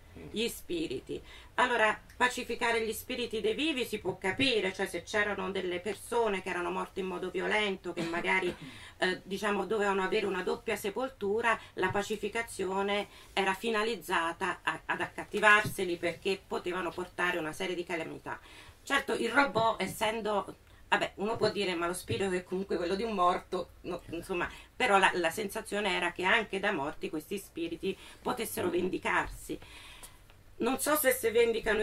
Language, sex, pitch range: Italian, female, 185-240 Hz